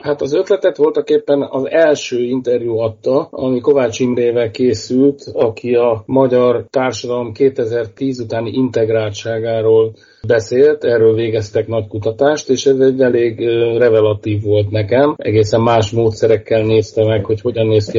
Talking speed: 135 wpm